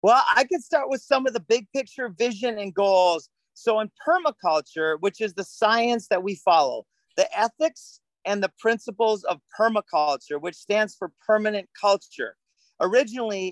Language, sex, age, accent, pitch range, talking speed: English, male, 40-59, American, 180-230 Hz, 160 wpm